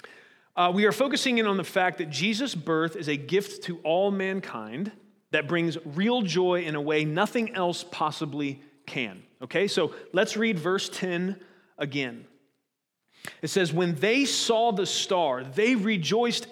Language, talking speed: English, 160 wpm